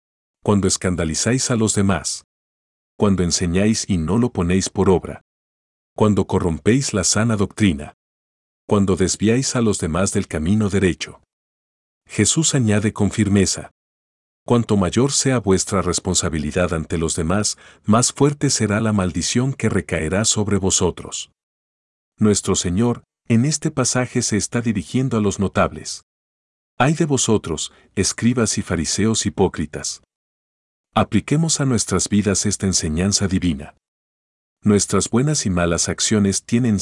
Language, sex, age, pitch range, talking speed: Spanish, male, 50-69, 85-115 Hz, 125 wpm